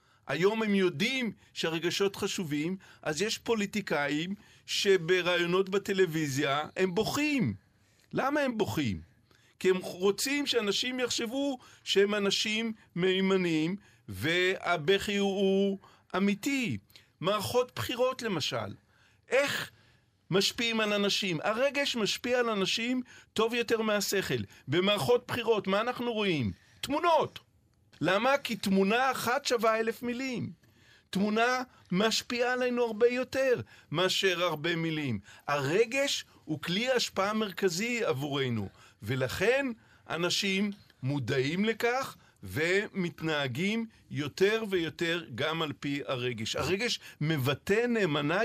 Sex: male